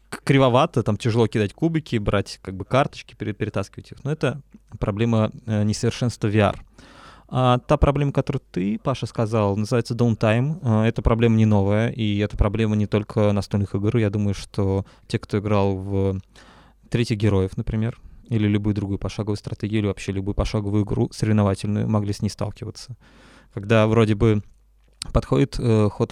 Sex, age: male, 20-39